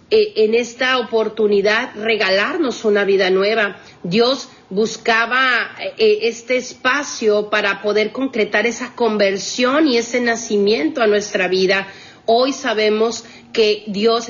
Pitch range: 210-235 Hz